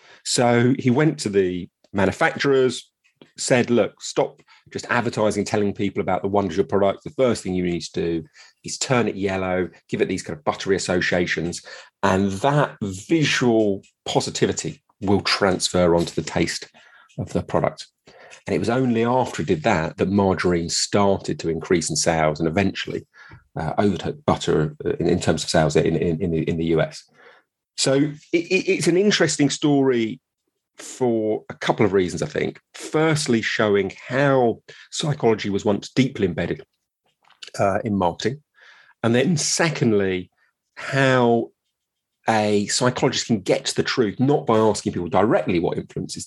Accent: British